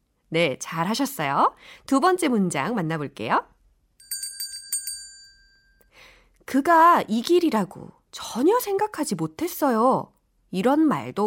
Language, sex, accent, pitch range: Korean, female, native, 205-335 Hz